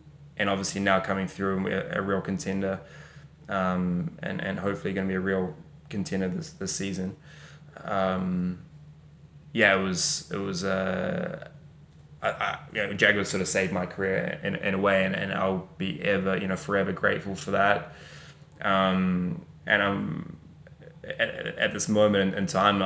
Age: 10-29